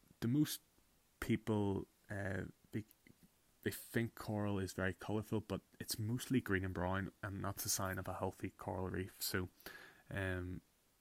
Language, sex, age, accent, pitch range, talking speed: English, male, 20-39, Irish, 90-105 Hz, 155 wpm